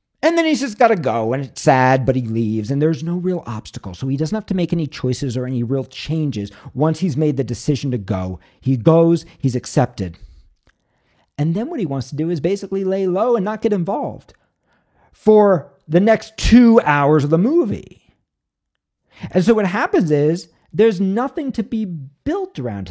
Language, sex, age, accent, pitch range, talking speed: English, male, 40-59, American, 130-190 Hz, 195 wpm